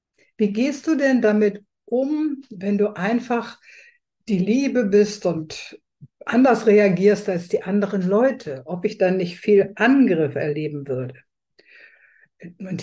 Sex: female